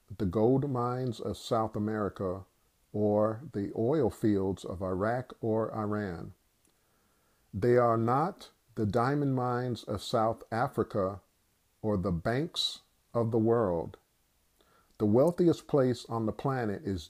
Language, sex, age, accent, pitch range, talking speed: English, male, 50-69, American, 105-130 Hz, 125 wpm